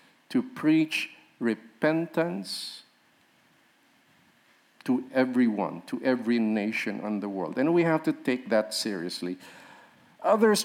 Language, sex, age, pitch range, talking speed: English, male, 50-69, 120-170 Hz, 105 wpm